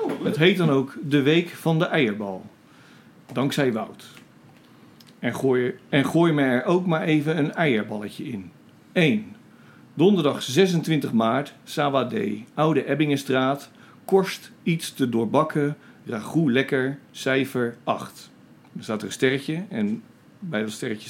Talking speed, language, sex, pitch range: 130 wpm, Dutch, male, 115-150 Hz